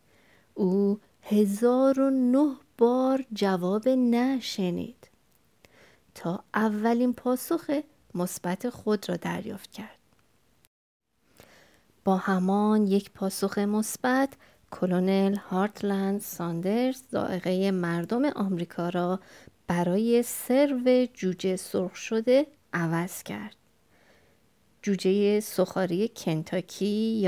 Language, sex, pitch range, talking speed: Persian, female, 185-235 Hz, 80 wpm